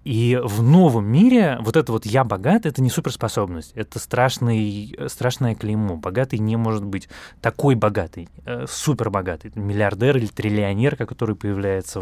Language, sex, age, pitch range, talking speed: Russian, male, 20-39, 105-130 Hz, 135 wpm